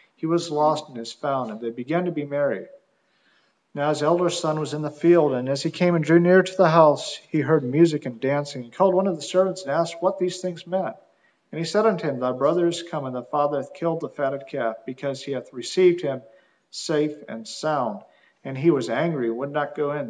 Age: 50-69